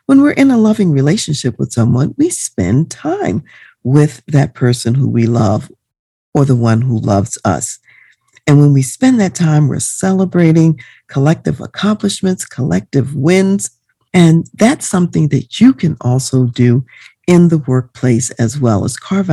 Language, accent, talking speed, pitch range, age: English, American, 155 wpm, 125-185 Hz, 50-69